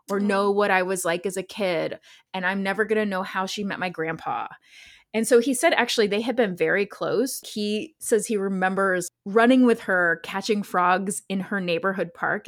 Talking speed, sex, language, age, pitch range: 205 wpm, female, English, 20-39, 170-215 Hz